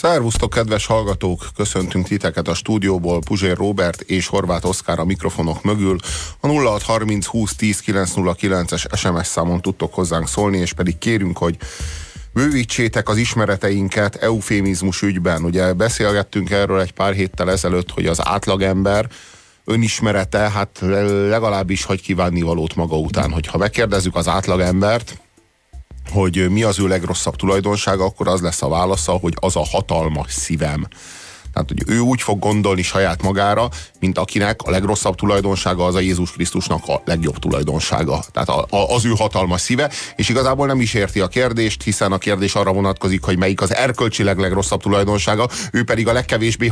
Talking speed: 155 wpm